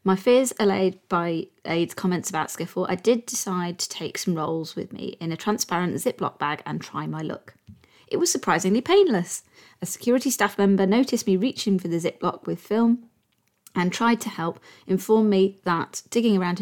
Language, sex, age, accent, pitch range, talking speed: English, female, 30-49, British, 175-225 Hz, 185 wpm